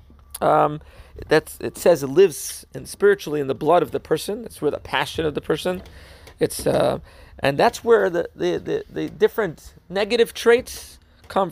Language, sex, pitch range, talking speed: English, male, 135-195 Hz, 175 wpm